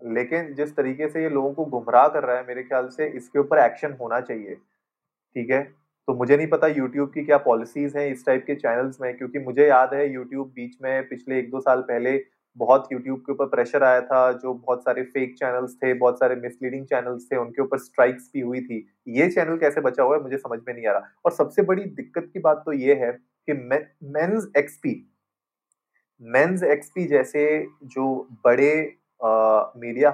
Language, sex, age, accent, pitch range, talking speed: Hindi, male, 30-49, native, 125-145 Hz, 200 wpm